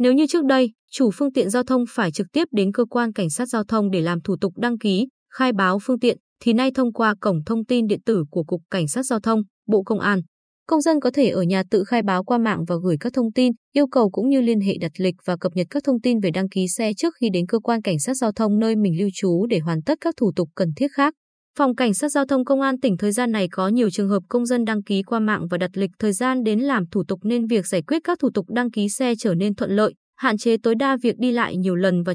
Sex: female